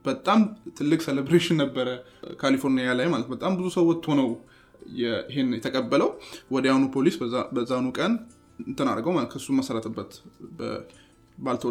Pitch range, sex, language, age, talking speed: 125-145 Hz, male, Amharic, 20-39, 150 wpm